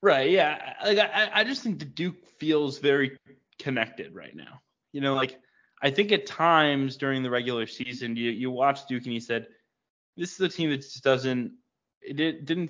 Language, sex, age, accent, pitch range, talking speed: English, male, 20-39, American, 125-150 Hz, 195 wpm